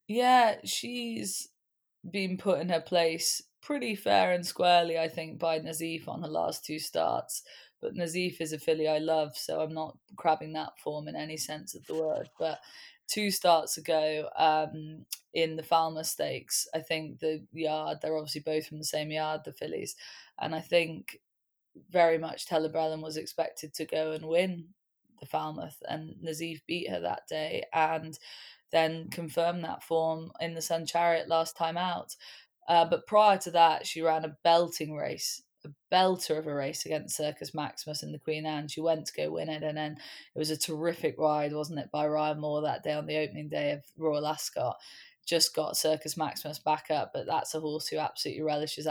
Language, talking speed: English, 190 wpm